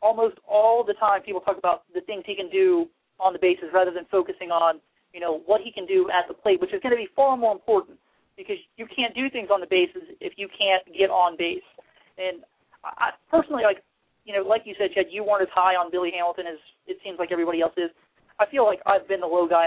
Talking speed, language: 250 wpm, English